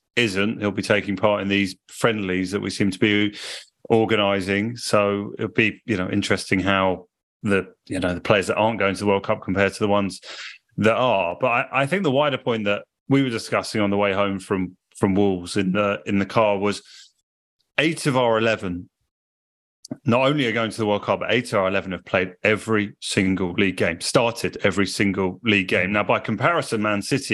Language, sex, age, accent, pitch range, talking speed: English, male, 30-49, British, 95-110 Hz, 210 wpm